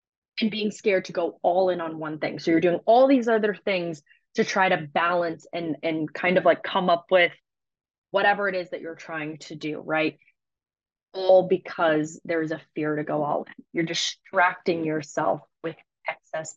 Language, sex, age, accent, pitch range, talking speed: English, female, 20-39, American, 165-200 Hz, 190 wpm